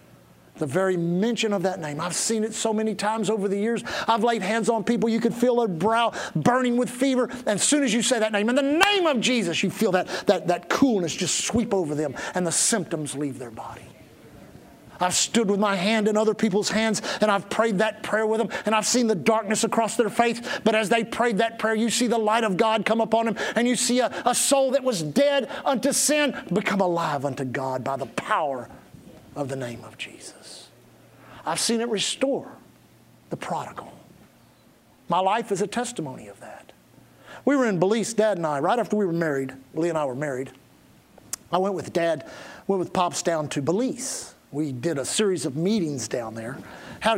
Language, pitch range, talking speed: English, 170-230 Hz, 215 wpm